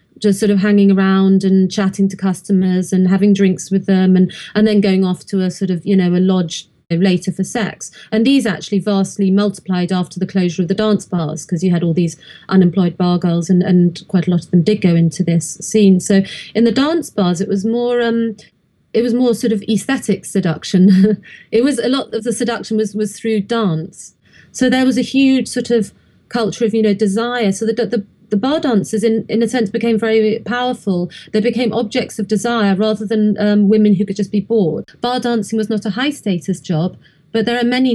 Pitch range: 190-230 Hz